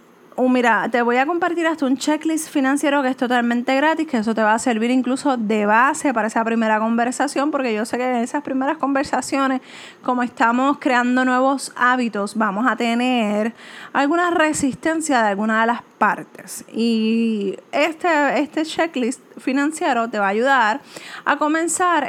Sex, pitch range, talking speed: female, 225-280 Hz, 165 wpm